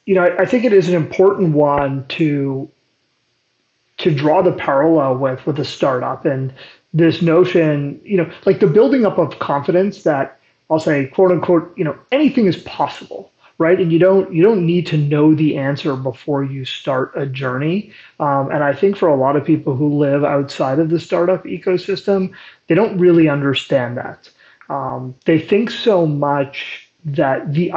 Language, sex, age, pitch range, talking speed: English, male, 30-49, 145-180 Hz, 180 wpm